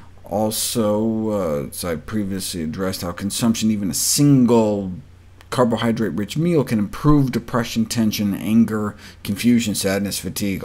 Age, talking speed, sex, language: 50-69, 120 wpm, male, English